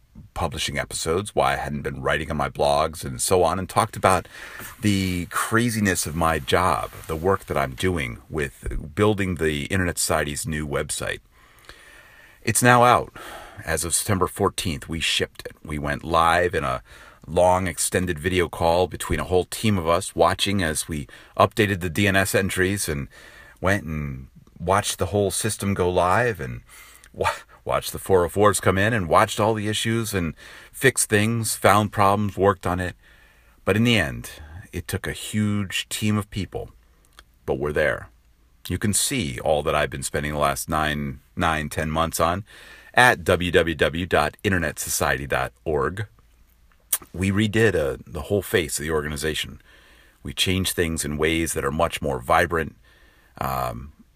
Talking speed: 160 wpm